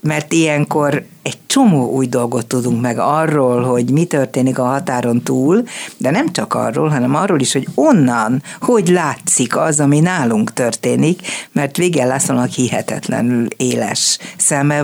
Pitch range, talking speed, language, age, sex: 130-160 Hz, 140 wpm, Hungarian, 60-79, female